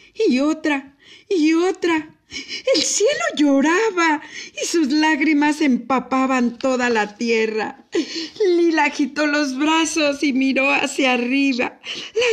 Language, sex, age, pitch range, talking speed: Spanish, female, 50-69, 205-310 Hz, 110 wpm